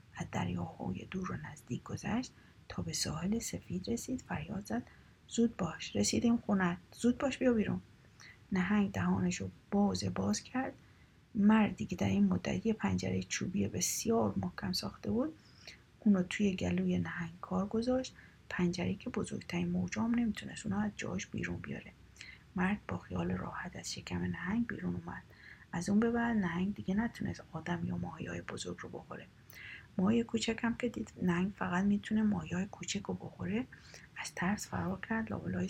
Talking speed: 155 wpm